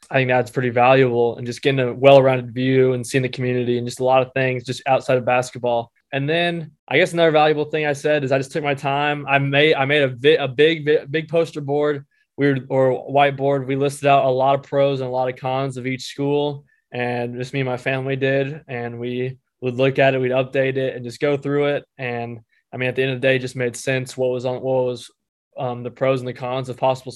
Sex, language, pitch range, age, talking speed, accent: male, English, 125-145 Hz, 20-39, 260 wpm, American